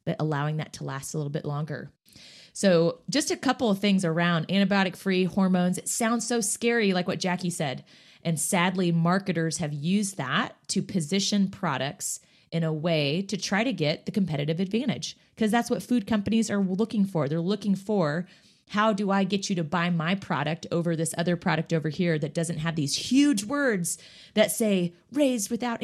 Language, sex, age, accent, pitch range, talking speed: English, female, 30-49, American, 165-200 Hz, 190 wpm